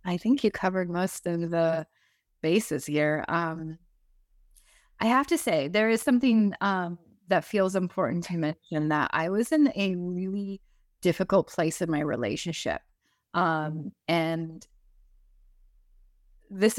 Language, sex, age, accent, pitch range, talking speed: English, female, 20-39, American, 165-195 Hz, 130 wpm